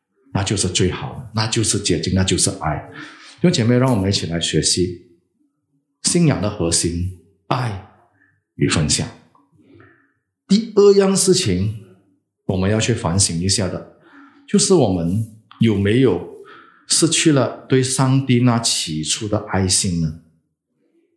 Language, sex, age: English, male, 50-69